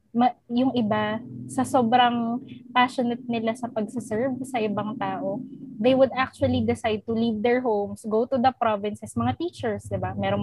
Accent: native